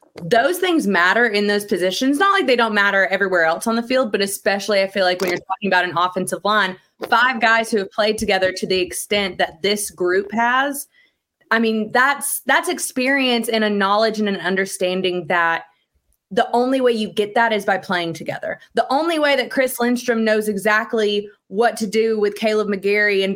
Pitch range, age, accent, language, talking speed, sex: 195-245 Hz, 20-39, American, English, 200 wpm, female